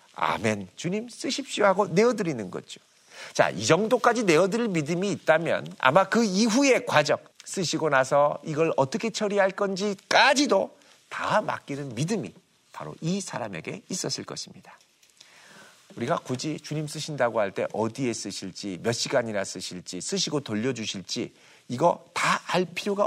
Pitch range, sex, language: 120-195 Hz, male, Korean